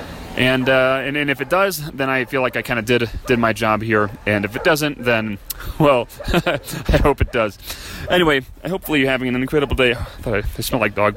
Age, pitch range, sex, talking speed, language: 30-49, 105-130 Hz, male, 230 wpm, English